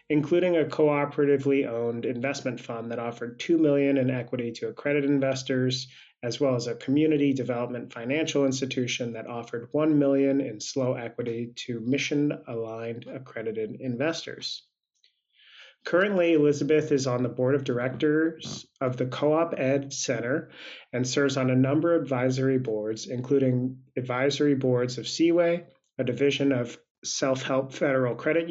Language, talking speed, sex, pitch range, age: English, 140 wpm, male, 125-150 Hz, 30-49